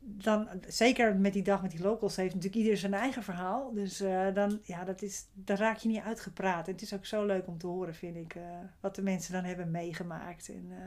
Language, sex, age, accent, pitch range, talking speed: Dutch, female, 40-59, Dutch, 185-220 Hz, 245 wpm